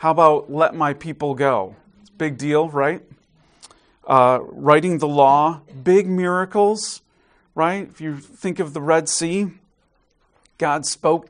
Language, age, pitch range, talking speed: English, 40-59, 135-165 Hz, 145 wpm